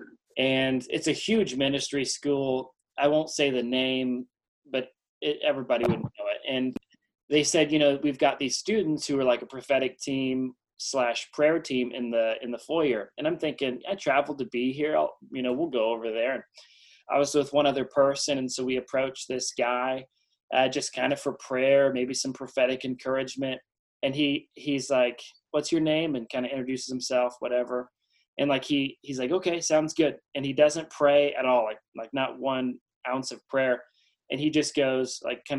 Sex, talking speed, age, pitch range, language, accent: male, 200 wpm, 20-39, 125-145 Hz, English, American